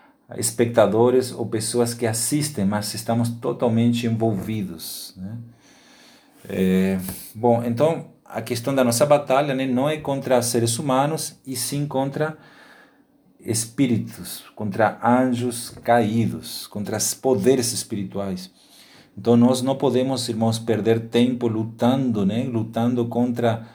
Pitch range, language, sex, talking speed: 115-135 Hz, Portuguese, male, 115 wpm